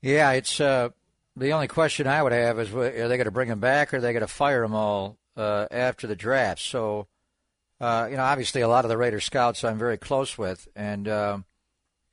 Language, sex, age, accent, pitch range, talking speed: English, male, 60-79, American, 105-125 Hz, 230 wpm